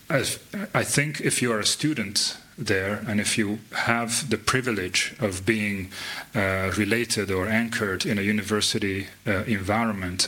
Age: 40-59